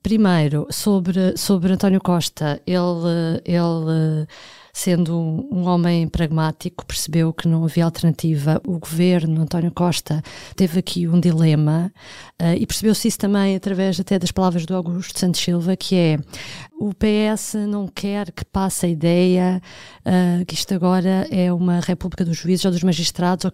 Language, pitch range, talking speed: Portuguese, 170-195 Hz, 155 wpm